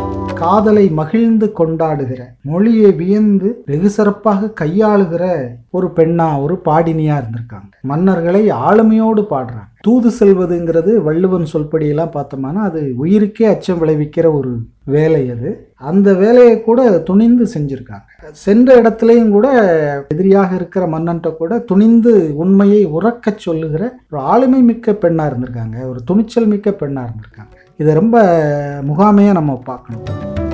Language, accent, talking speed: Tamil, native, 115 wpm